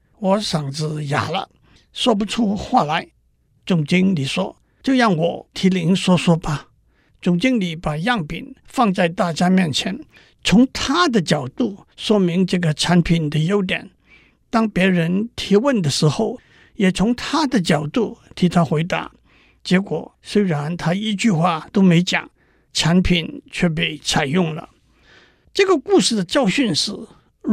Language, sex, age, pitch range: Chinese, male, 60-79, 165-220 Hz